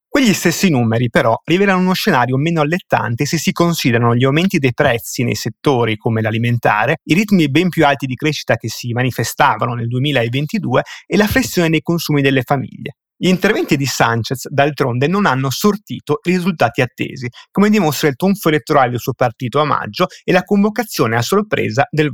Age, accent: 30-49, native